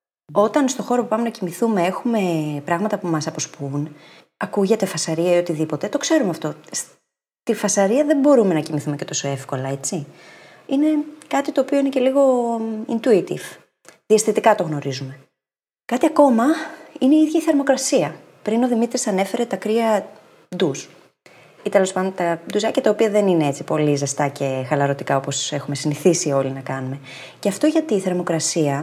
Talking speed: 160 wpm